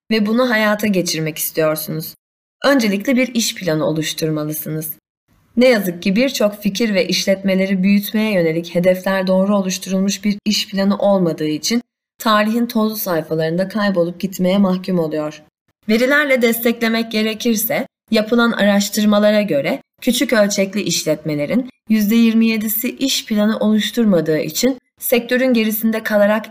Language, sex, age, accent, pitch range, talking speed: Turkish, female, 30-49, native, 175-235 Hz, 115 wpm